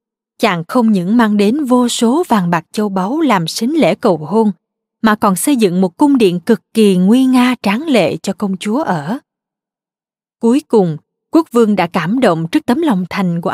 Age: 20-39